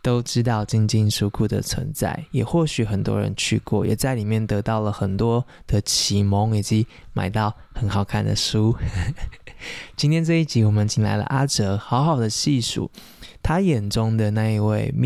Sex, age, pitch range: male, 20-39, 105-125 Hz